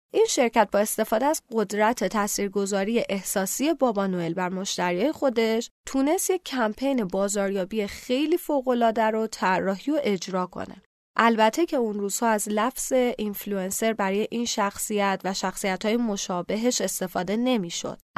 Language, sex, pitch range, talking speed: Persian, female, 195-250 Hz, 130 wpm